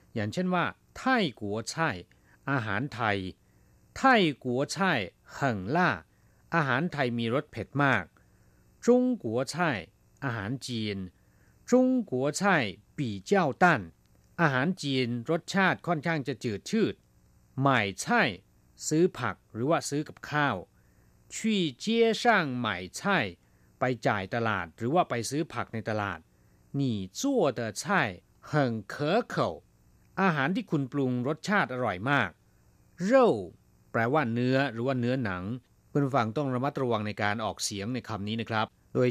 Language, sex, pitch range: Thai, male, 105-155 Hz